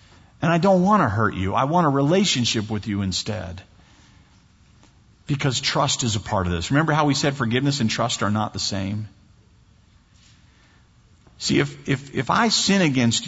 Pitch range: 105-165 Hz